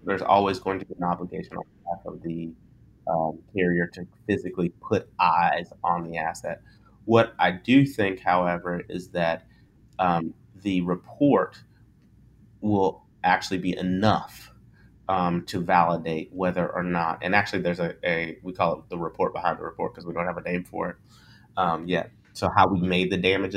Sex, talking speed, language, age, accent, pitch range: male, 180 wpm, English, 30-49, American, 85-100 Hz